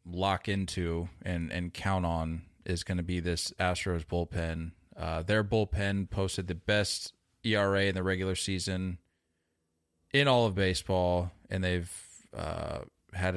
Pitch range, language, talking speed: 85-115 Hz, English, 145 wpm